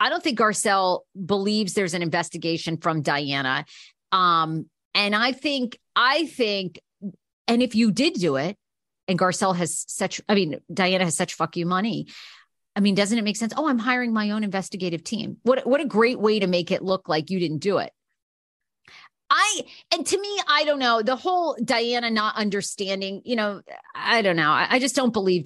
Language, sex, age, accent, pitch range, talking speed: English, female, 40-59, American, 175-245 Hz, 195 wpm